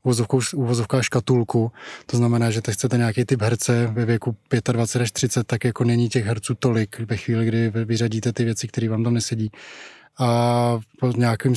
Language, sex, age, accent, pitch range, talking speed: Czech, male, 10-29, native, 115-125 Hz, 175 wpm